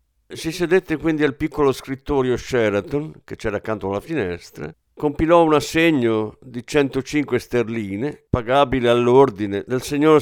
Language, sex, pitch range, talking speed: Italian, male, 105-150 Hz, 130 wpm